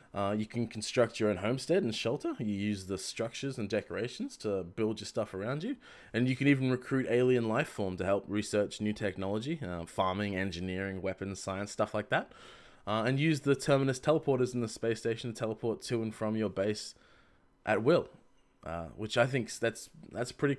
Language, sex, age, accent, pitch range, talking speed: English, male, 20-39, Australian, 100-120 Hz, 195 wpm